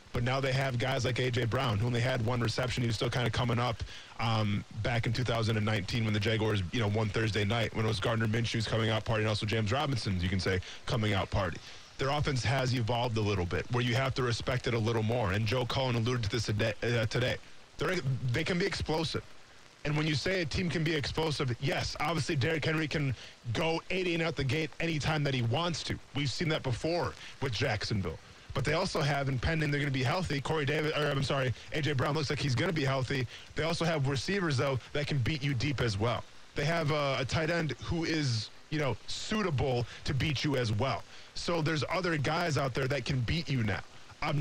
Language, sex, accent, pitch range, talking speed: English, male, American, 115-160 Hz, 235 wpm